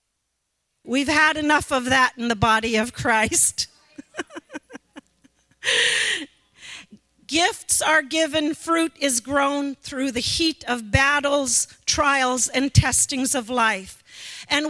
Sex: female